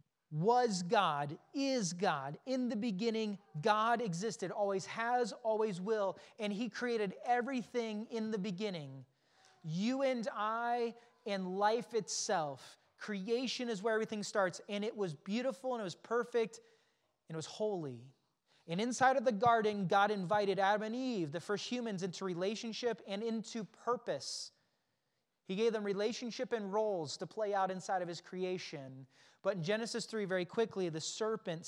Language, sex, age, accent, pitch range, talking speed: English, male, 30-49, American, 185-230 Hz, 155 wpm